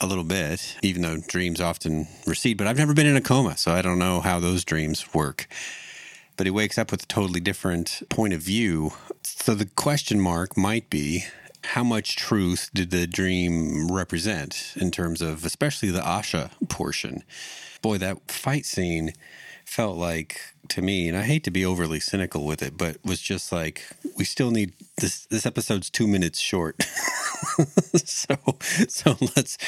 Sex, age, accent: male, 40-59, American